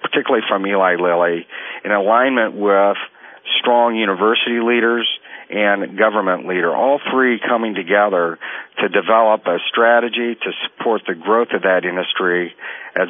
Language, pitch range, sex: English, 95-115 Hz, male